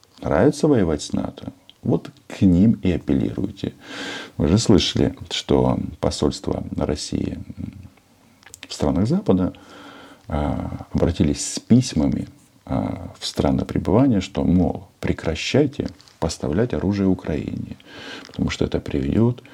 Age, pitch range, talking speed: 50-69, 75-100 Hz, 105 wpm